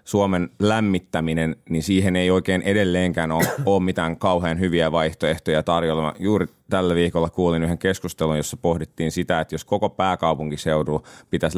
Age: 30-49